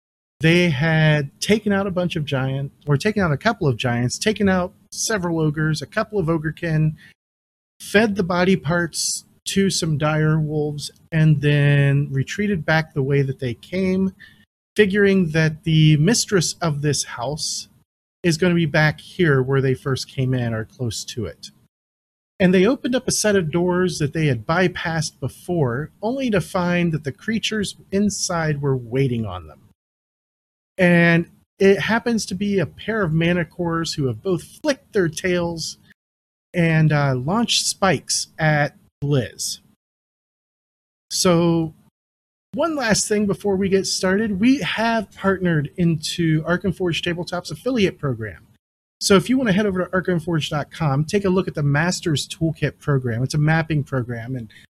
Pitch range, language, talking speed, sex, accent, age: 140-190 Hz, English, 160 wpm, male, American, 40-59